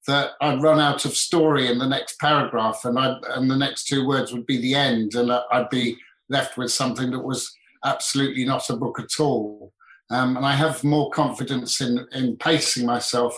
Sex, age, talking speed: male, 50-69, 200 wpm